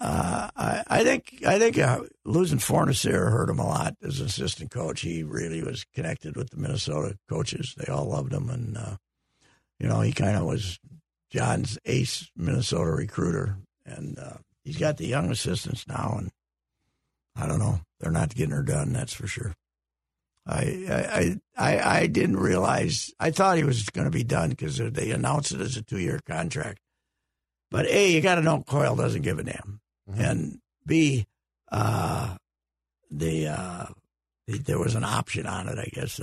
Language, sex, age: English, male, 60-79